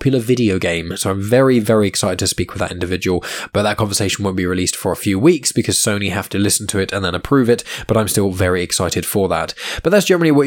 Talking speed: 250 wpm